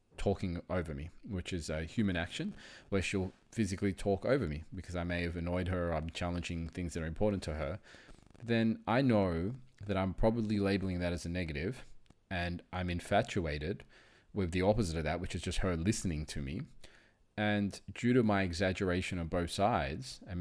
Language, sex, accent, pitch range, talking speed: English, male, Australian, 85-100 Hz, 190 wpm